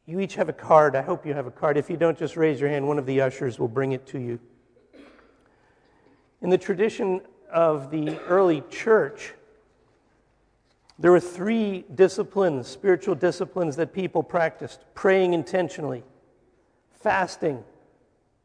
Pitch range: 150-190 Hz